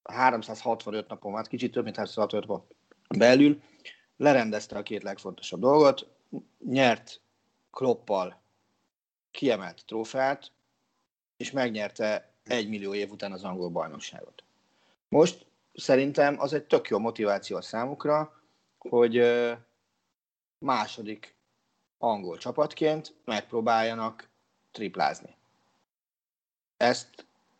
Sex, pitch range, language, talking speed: male, 100-135 Hz, Hungarian, 95 wpm